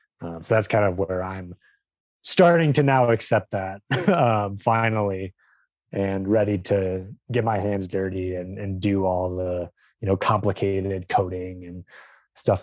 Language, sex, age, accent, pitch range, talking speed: English, male, 30-49, American, 90-105 Hz, 150 wpm